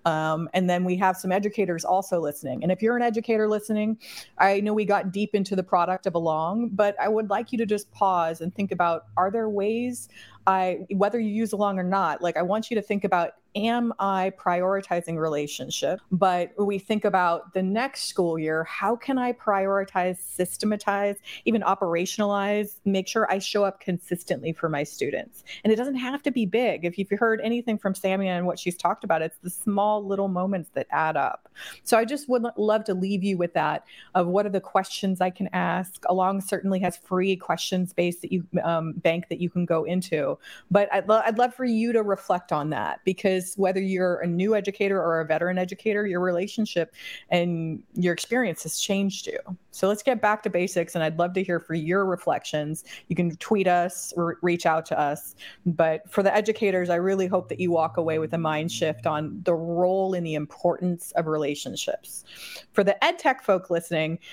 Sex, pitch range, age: female, 175-205 Hz, 30-49